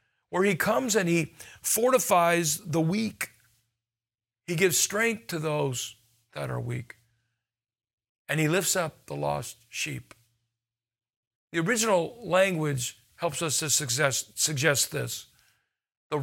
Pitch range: 120-180 Hz